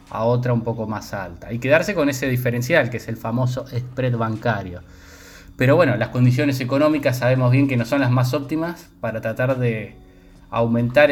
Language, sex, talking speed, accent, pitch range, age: Spanish, male, 185 wpm, Argentinian, 110-135 Hz, 20-39